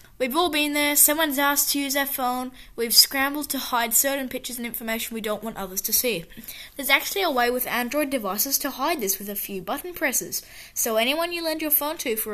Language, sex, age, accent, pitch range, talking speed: English, female, 10-29, Australian, 205-265 Hz, 230 wpm